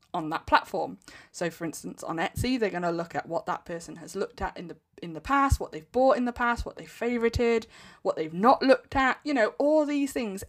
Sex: female